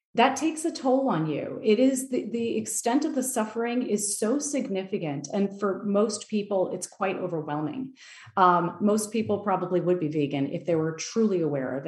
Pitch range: 175-225 Hz